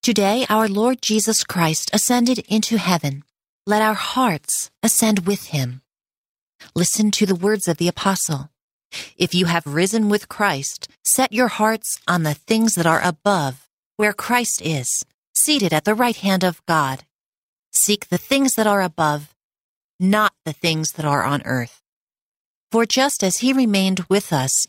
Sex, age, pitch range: female, 40-59, 155-215 Hz